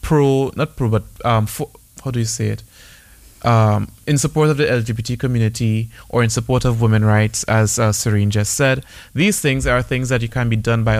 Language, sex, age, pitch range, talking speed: English, male, 30-49, 110-125 Hz, 205 wpm